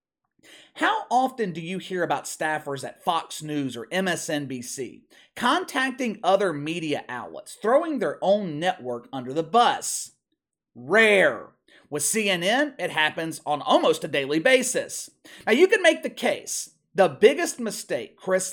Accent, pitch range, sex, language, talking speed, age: American, 150-245 Hz, male, English, 140 wpm, 40-59